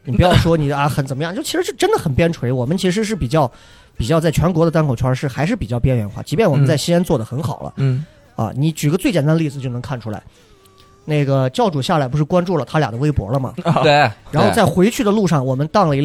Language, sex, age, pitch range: Chinese, male, 30-49, 130-190 Hz